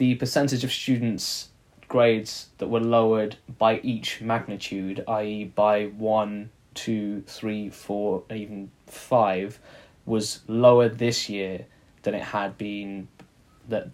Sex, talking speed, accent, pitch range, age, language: male, 120 wpm, British, 105-115 Hz, 10-29, English